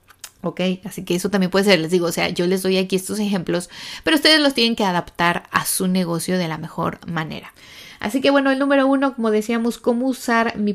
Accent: Mexican